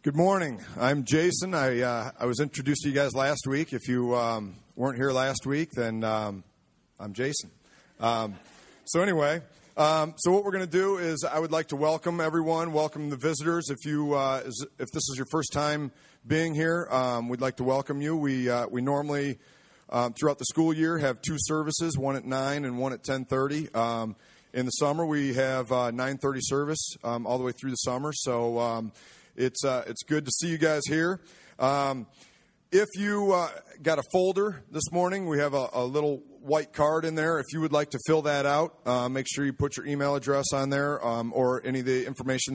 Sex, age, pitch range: male, 40-59, 125-155 Hz